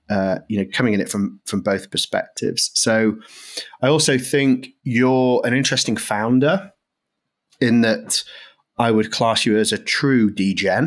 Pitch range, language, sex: 105-130 Hz, English, male